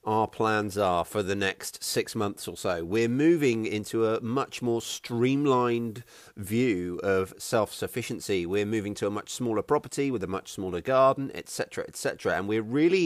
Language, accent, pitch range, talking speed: English, British, 105-135 Hz, 170 wpm